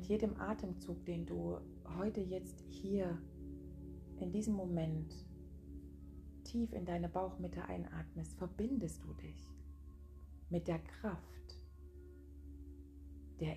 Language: German